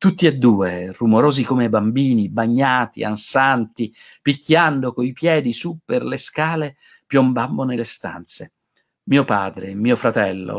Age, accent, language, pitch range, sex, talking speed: 50-69, native, Italian, 110-140 Hz, male, 130 wpm